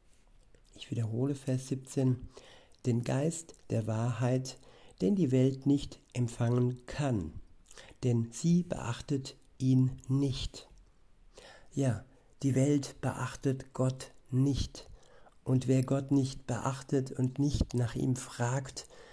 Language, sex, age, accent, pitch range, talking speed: German, male, 50-69, German, 125-135 Hz, 110 wpm